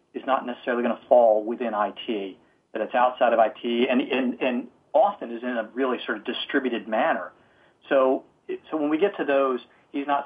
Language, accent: English, American